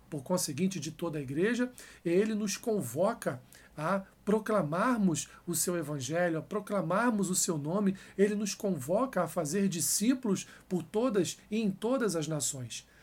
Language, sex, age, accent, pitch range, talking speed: Portuguese, male, 50-69, Brazilian, 160-195 Hz, 145 wpm